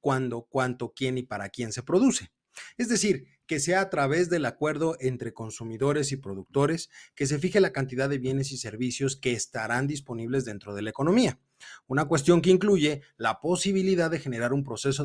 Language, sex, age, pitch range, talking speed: Spanish, male, 30-49, 120-155 Hz, 185 wpm